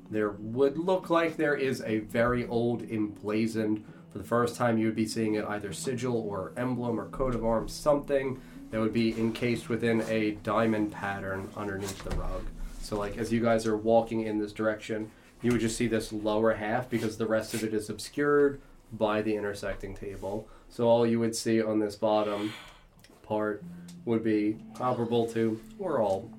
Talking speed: 185 wpm